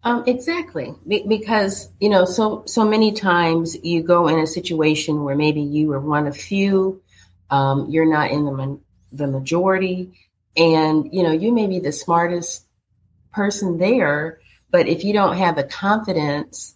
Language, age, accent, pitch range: English, 40-59, American, 150-180 Hz